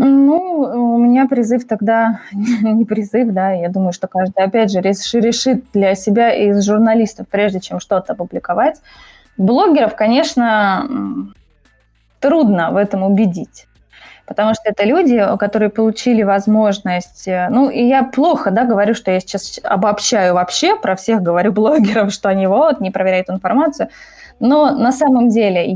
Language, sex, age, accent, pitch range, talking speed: Russian, female, 20-39, native, 195-245 Hz, 140 wpm